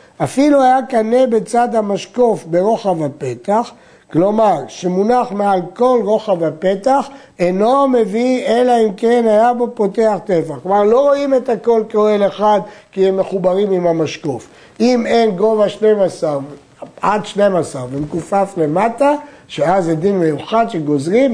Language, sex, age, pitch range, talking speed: Hebrew, male, 60-79, 170-235 Hz, 130 wpm